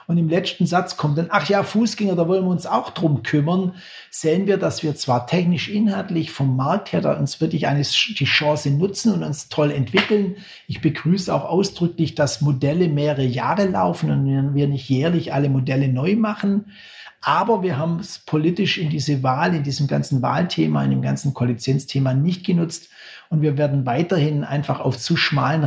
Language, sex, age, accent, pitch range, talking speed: German, male, 60-79, German, 140-170 Hz, 185 wpm